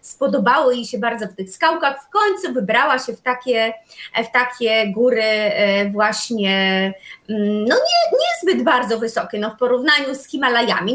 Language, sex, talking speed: Polish, female, 150 wpm